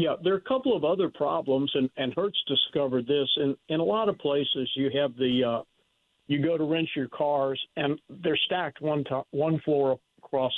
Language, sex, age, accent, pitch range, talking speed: English, male, 50-69, American, 130-150 Hz, 215 wpm